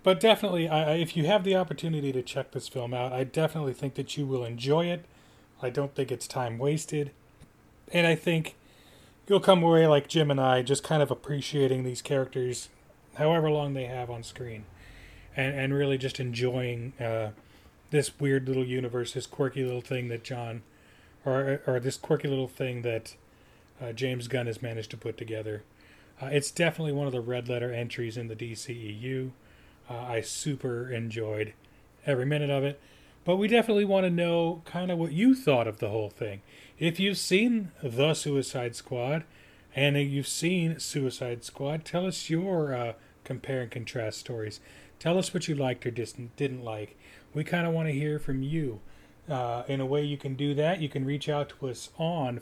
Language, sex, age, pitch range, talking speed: English, male, 30-49, 120-150 Hz, 190 wpm